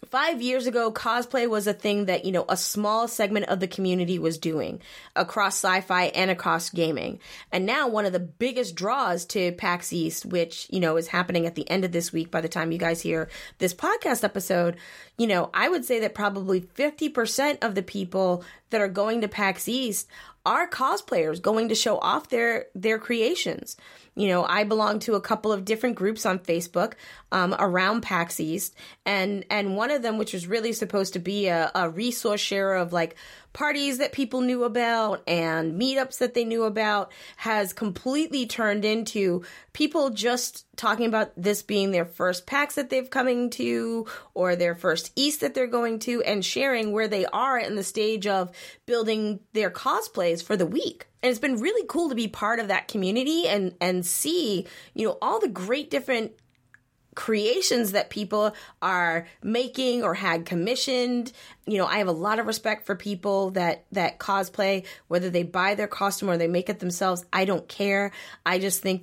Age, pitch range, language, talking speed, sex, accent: 20-39, 180-230 Hz, English, 190 wpm, female, American